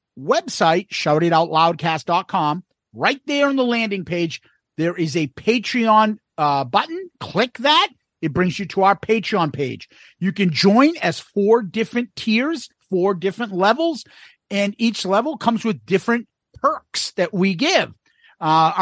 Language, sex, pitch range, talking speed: English, male, 175-240 Hz, 145 wpm